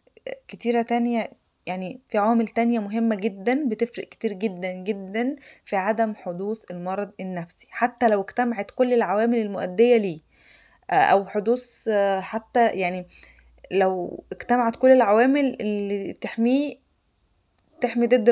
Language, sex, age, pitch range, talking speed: Arabic, female, 20-39, 195-235 Hz, 120 wpm